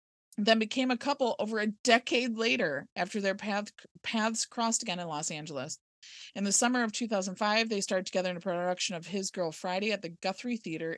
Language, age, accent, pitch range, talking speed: English, 30-49, American, 175-230 Hz, 190 wpm